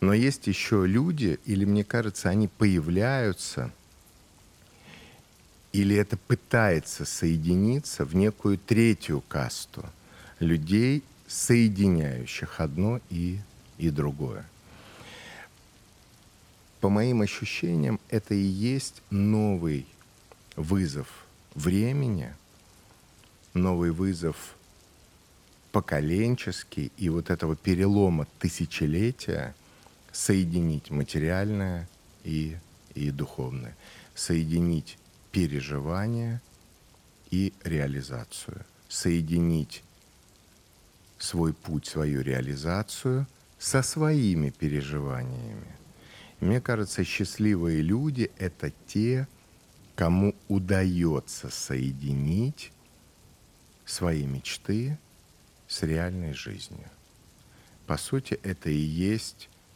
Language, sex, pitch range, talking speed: Russian, male, 80-105 Hz, 75 wpm